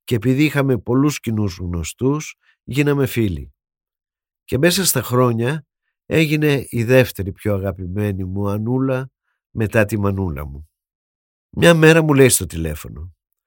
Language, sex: Greek, male